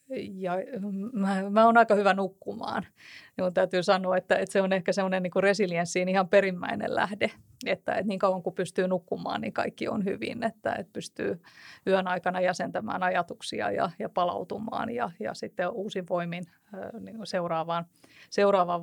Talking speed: 155 wpm